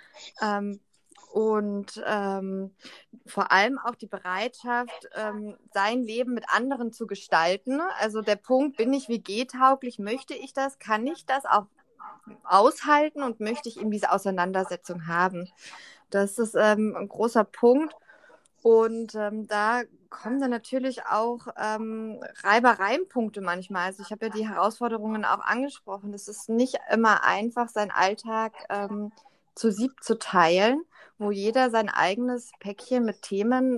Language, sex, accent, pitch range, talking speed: German, female, German, 200-245 Hz, 140 wpm